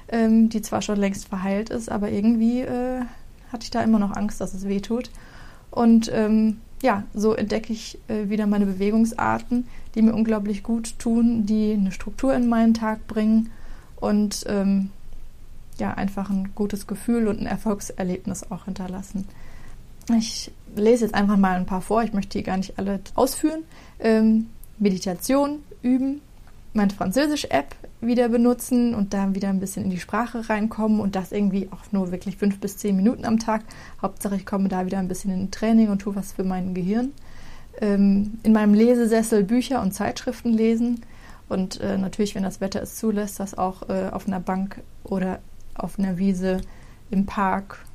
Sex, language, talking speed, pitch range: female, German, 170 wpm, 195-225 Hz